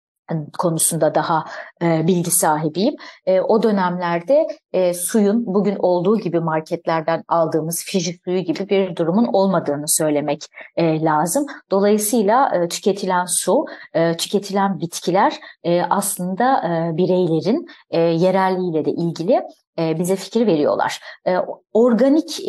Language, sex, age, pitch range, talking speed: Turkish, female, 30-49, 165-205 Hz, 90 wpm